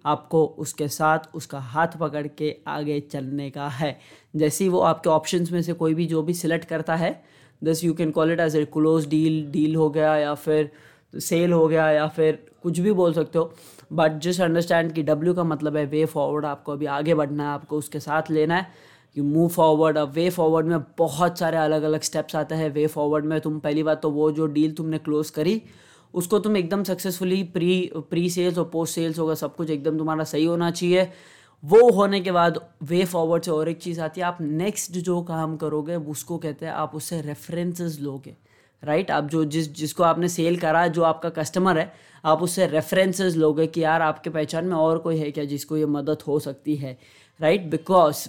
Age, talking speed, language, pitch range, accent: 20-39, 210 wpm, Hindi, 155-175 Hz, native